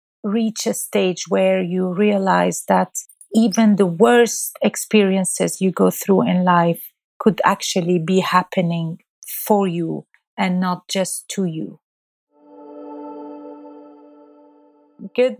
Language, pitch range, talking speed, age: English, 180-220 Hz, 110 wpm, 40-59